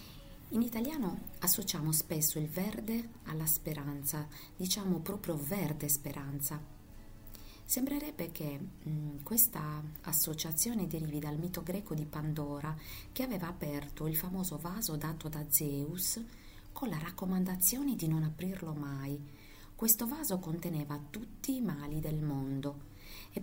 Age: 40-59